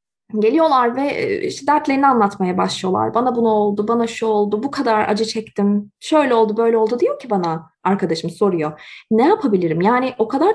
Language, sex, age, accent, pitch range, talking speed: Turkish, female, 20-39, native, 200-320 Hz, 170 wpm